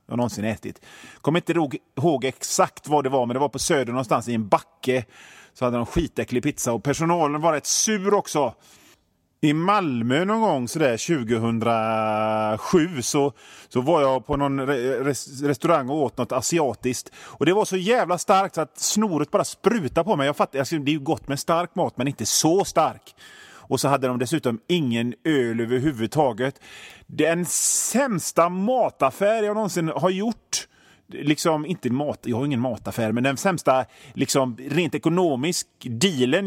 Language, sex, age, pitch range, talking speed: Swedish, male, 30-49, 125-175 Hz, 175 wpm